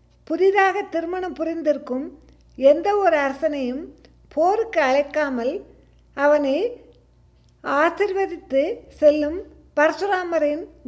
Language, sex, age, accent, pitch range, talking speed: Tamil, female, 50-69, native, 270-335 Hz, 65 wpm